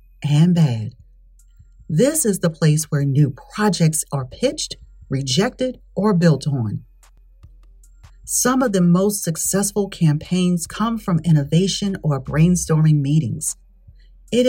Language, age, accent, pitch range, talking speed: English, 40-59, American, 145-205 Hz, 115 wpm